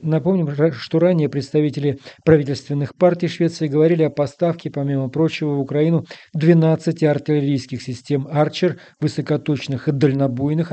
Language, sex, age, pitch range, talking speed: Russian, male, 40-59, 140-165 Hz, 110 wpm